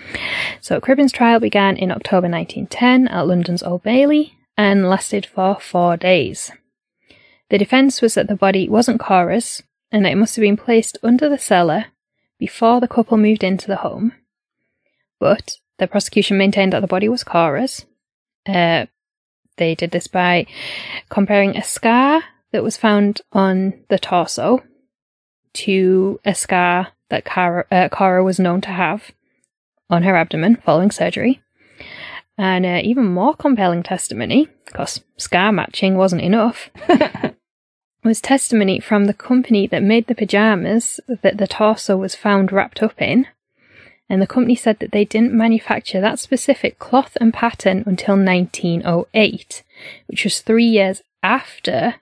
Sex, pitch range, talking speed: female, 185-235 Hz, 145 wpm